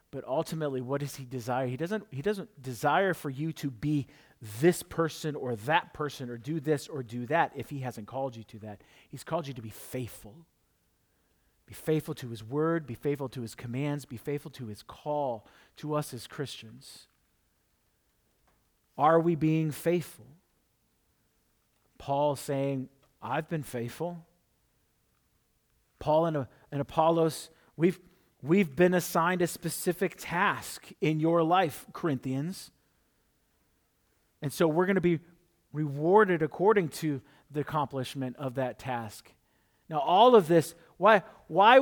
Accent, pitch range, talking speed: American, 135-175 Hz, 145 wpm